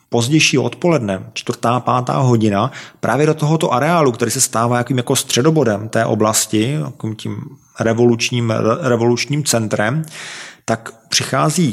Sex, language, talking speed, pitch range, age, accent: male, Czech, 125 wpm, 115-135 Hz, 40-59, native